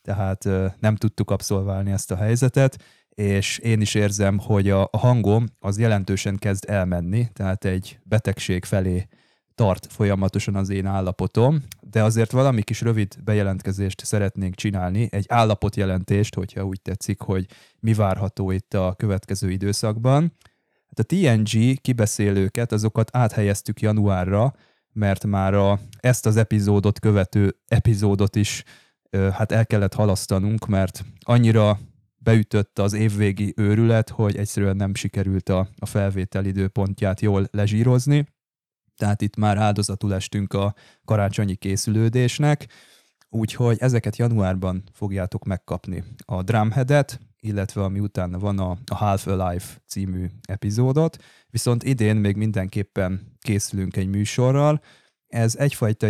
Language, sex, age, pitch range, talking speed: Hungarian, male, 20-39, 95-110 Hz, 120 wpm